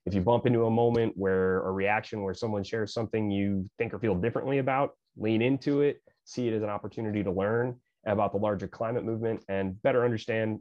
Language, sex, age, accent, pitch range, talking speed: English, male, 30-49, American, 105-120 Hz, 210 wpm